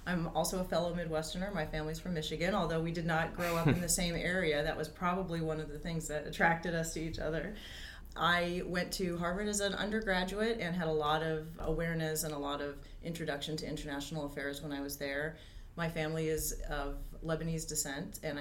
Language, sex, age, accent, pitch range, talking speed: English, female, 30-49, American, 150-170 Hz, 210 wpm